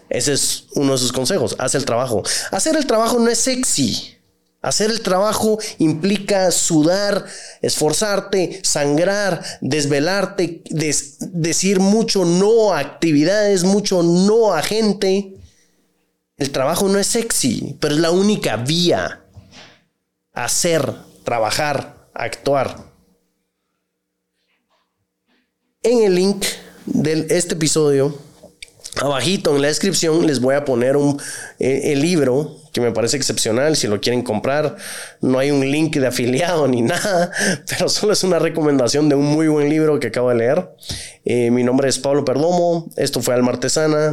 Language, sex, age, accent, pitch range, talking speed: Spanish, male, 30-49, Mexican, 135-190 Hz, 140 wpm